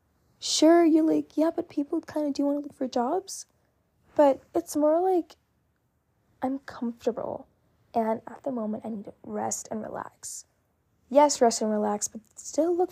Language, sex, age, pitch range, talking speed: English, female, 10-29, 230-325 Hz, 170 wpm